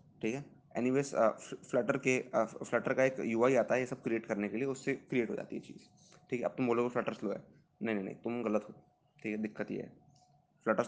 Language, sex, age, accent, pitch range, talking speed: Hindi, male, 20-39, native, 115-135 Hz, 250 wpm